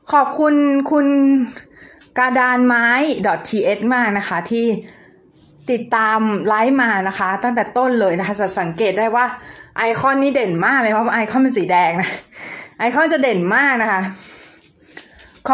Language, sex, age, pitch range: Thai, female, 20-39, 190-260 Hz